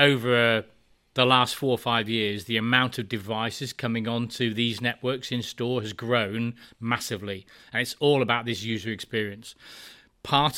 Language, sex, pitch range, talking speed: English, male, 115-135 Hz, 155 wpm